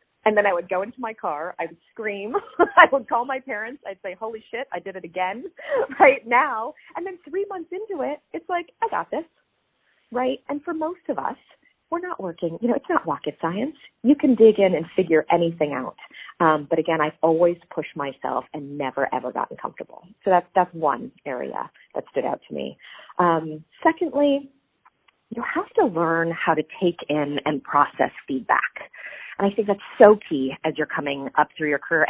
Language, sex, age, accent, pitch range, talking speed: English, female, 30-49, American, 150-245 Hz, 200 wpm